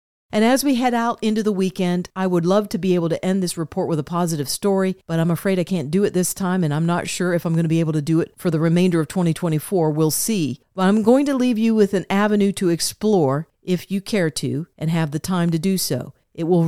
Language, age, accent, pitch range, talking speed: English, 40-59, American, 165-205 Hz, 270 wpm